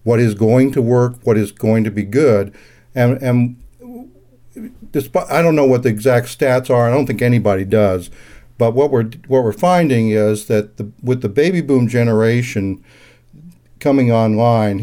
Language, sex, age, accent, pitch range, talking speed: English, male, 60-79, American, 110-135 Hz, 175 wpm